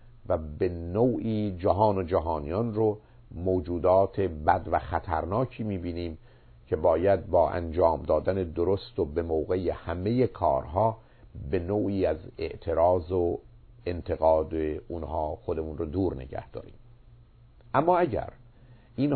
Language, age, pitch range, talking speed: Persian, 50-69, 90-120 Hz, 120 wpm